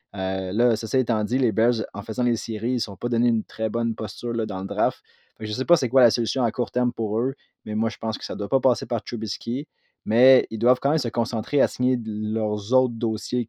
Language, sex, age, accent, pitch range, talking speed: French, male, 30-49, Canadian, 110-125 Hz, 270 wpm